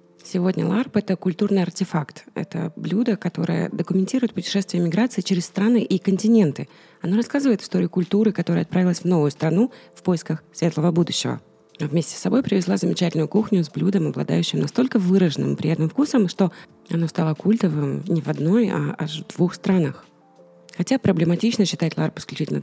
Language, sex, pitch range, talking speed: Russian, female, 160-205 Hz, 160 wpm